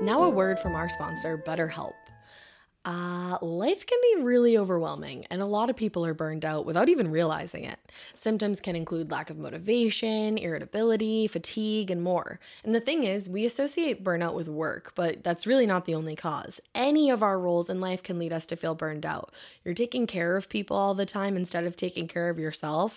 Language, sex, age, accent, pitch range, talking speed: English, female, 20-39, American, 165-220 Hz, 205 wpm